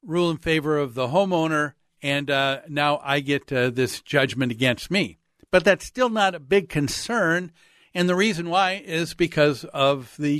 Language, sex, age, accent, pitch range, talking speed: English, male, 50-69, American, 140-170 Hz, 180 wpm